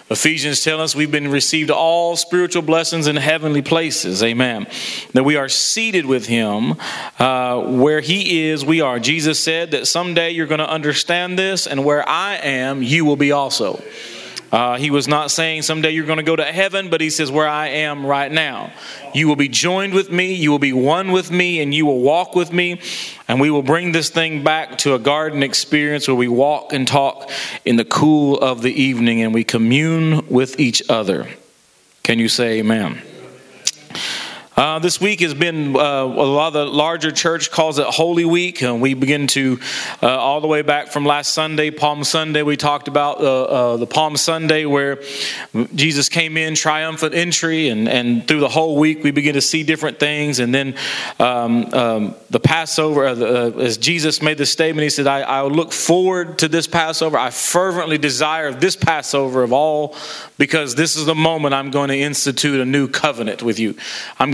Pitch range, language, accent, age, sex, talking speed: 140-160 Hz, English, American, 40-59, male, 200 wpm